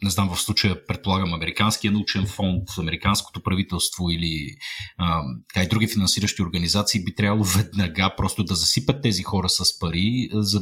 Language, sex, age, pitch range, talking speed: Bulgarian, male, 30-49, 90-110 Hz, 155 wpm